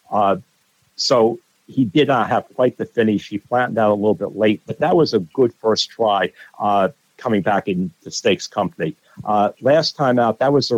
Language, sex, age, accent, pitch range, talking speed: English, male, 50-69, American, 105-130 Hz, 205 wpm